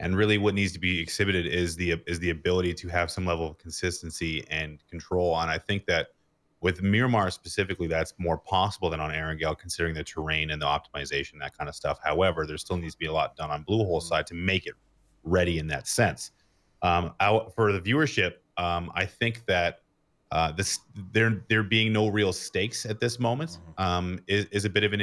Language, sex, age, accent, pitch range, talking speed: English, male, 30-49, American, 80-100 Hz, 215 wpm